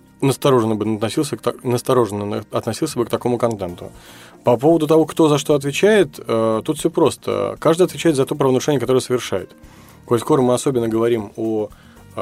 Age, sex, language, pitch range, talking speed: 20-39, male, Russian, 105-130 Hz, 155 wpm